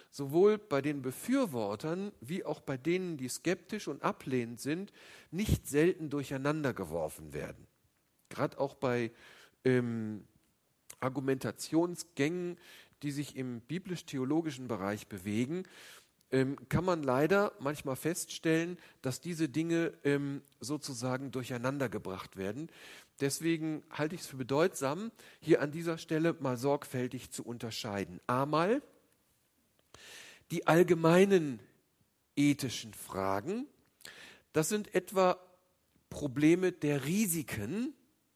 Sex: male